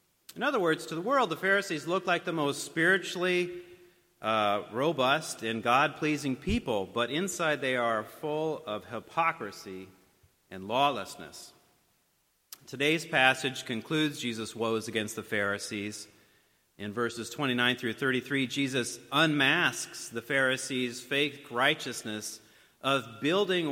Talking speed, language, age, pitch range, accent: 120 wpm, English, 40-59, 115-155 Hz, American